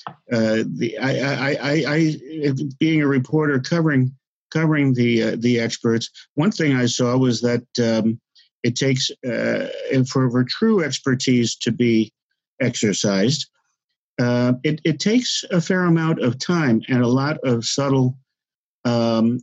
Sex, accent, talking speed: male, American, 140 wpm